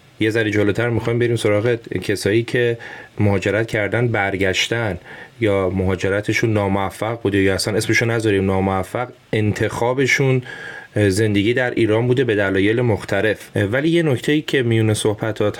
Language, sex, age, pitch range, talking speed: Persian, male, 30-49, 95-110 Hz, 125 wpm